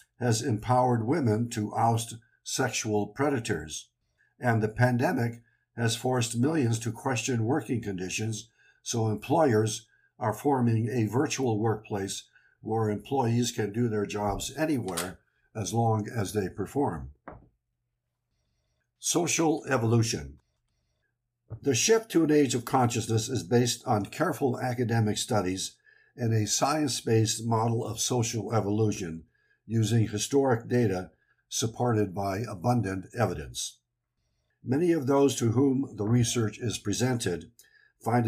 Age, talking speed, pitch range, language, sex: 60-79, 120 wpm, 105-125 Hz, English, male